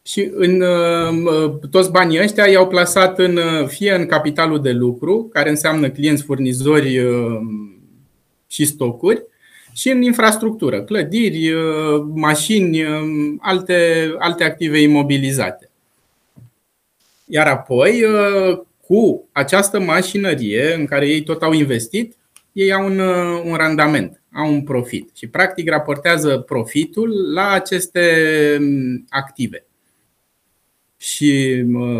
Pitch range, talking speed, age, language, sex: 135-180 Hz, 105 wpm, 20-39, Romanian, male